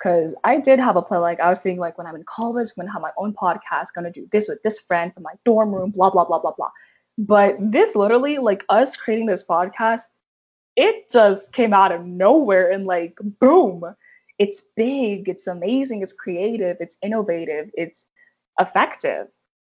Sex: female